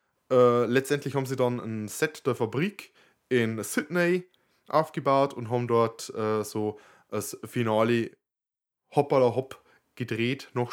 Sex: male